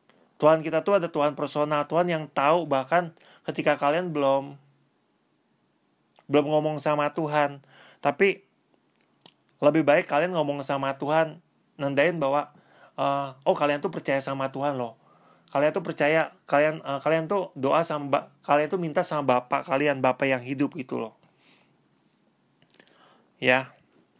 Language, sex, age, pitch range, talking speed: Indonesian, male, 30-49, 140-165 Hz, 135 wpm